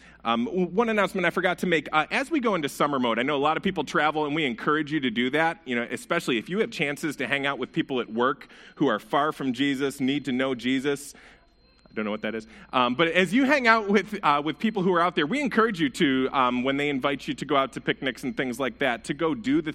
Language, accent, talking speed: English, American, 285 wpm